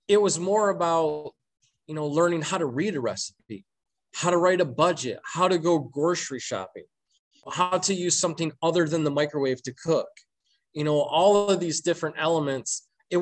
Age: 20-39